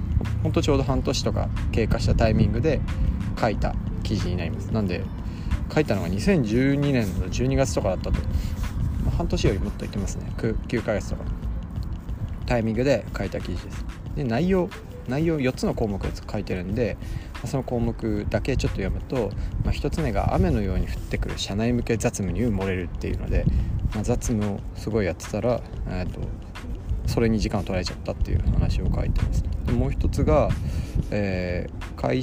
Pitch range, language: 90-115 Hz, Japanese